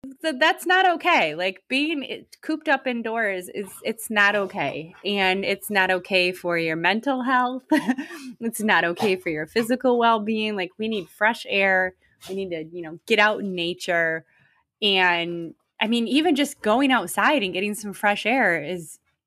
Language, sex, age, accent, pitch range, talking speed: English, female, 20-39, American, 180-245 Hz, 165 wpm